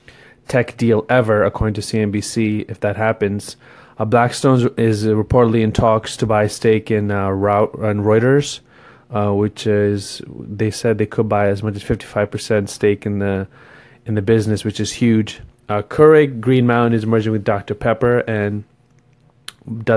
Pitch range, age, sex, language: 105-120 Hz, 30-49, male, English